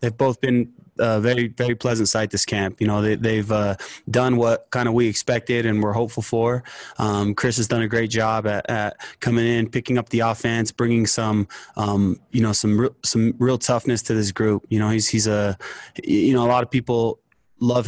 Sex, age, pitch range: male, 20-39, 105-120 Hz